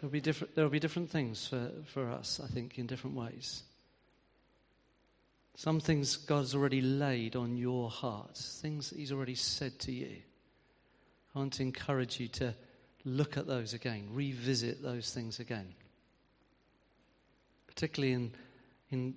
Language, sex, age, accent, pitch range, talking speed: English, male, 40-59, British, 125-140 Hz, 145 wpm